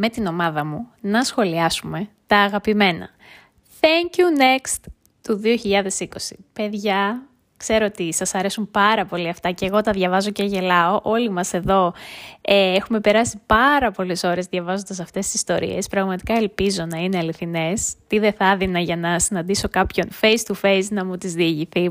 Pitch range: 180-215 Hz